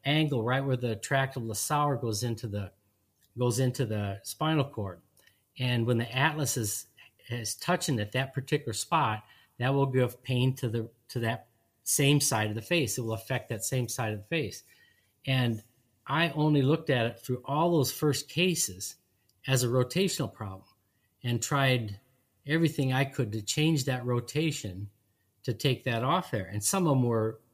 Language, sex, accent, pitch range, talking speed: English, male, American, 110-140 Hz, 180 wpm